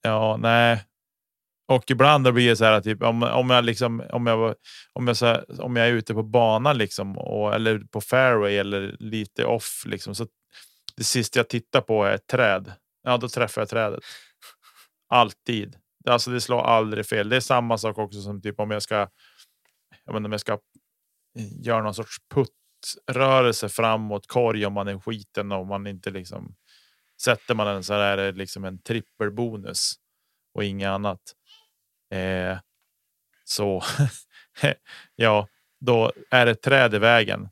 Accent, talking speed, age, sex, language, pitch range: Norwegian, 160 wpm, 30-49, male, Swedish, 105-120 Hz